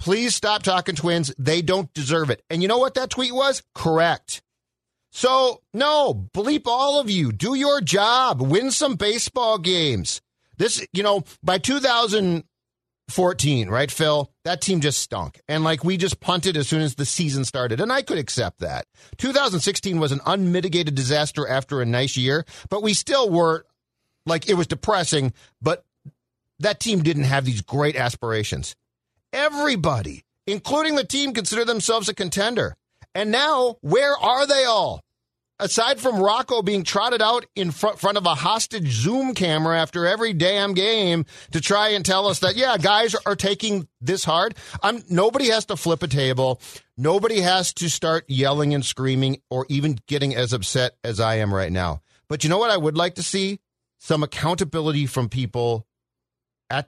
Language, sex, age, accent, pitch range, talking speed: English, male, 40-59, American, 140-210 Hz, 170 wpm